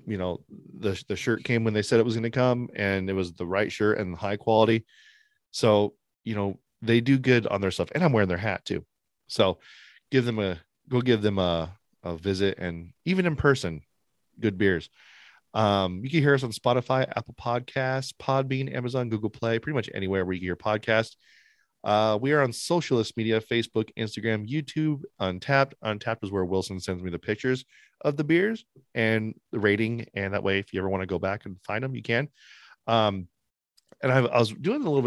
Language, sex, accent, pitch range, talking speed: English, male, American, 95-130 Hz, 205 wpm